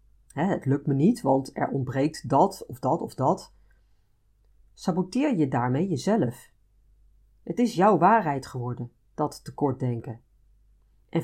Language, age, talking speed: Dutch, 40-59, 130 wpm